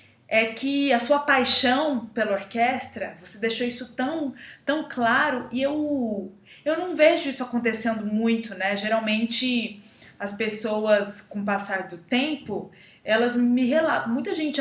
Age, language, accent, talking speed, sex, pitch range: 20-39, Portuguese, Brazilian, 145 wpm, female, 215-255 Hz